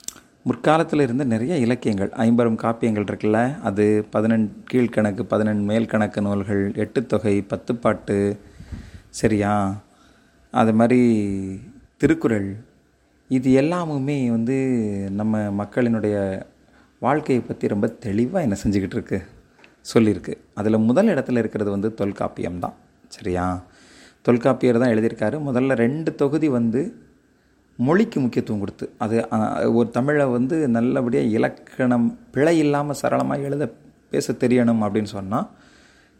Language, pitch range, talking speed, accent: Tamil, 105-125 Hz, 105 wpm, native